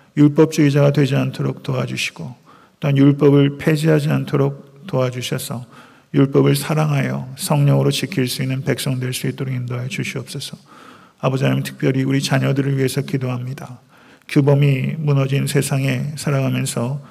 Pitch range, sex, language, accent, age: 130-145 Hz, male, Korean, native, 40-59